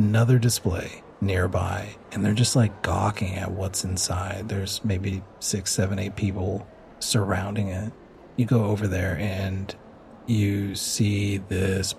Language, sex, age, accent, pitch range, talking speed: English, male, 40-59, American, 100-125 Hz, 135 wpm